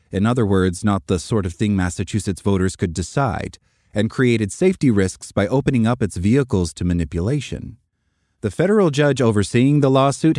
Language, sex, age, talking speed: English, male, 30-49, 170 wpm